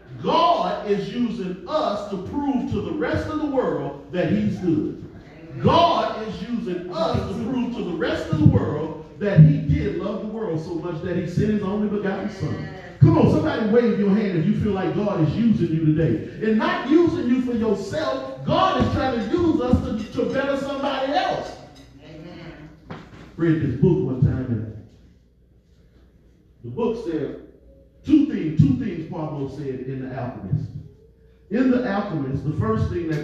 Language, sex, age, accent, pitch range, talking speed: English, male, 40-59, American, 140-215 Hz, 180 wpm